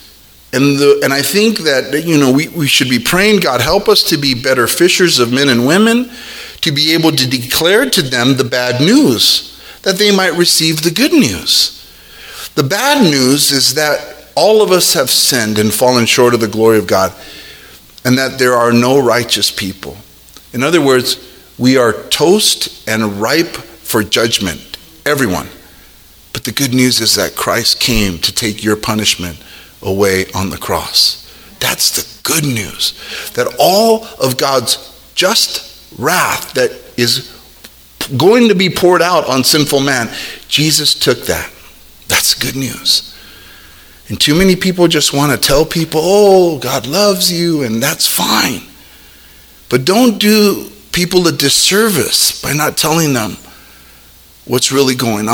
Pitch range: 120-170 Hz